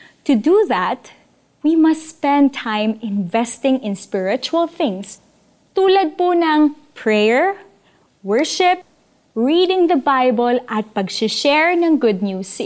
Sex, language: female, Filipino